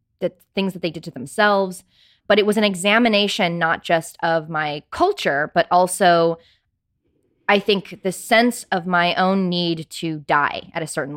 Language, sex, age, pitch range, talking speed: English, female, 20-39, 165-205 Hz, 170 wpm